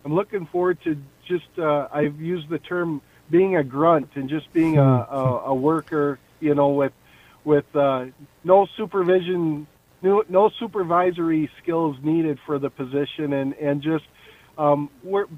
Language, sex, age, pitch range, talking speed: English, male, 50-69, 135-160 Hz, 155 wpm